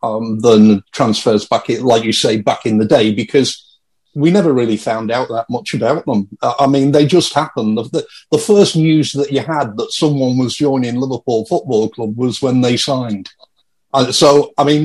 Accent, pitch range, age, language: British, 125-160 Hz, 50-69, English